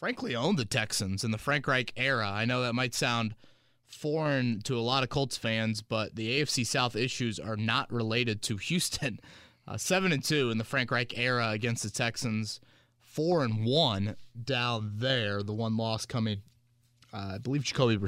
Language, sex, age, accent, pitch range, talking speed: English, male, 20-39, American, 110-145 Hz, 185 wpm